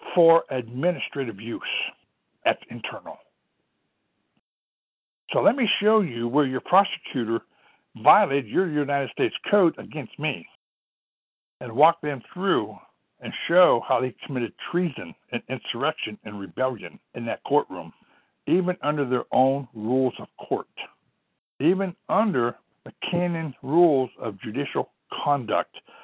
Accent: American